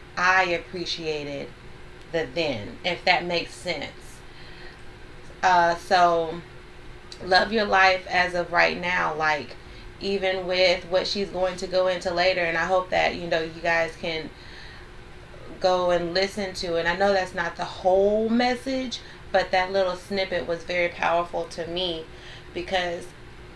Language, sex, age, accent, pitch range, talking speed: English, female, 30-49, American, 165-185 Hz, 150 wpm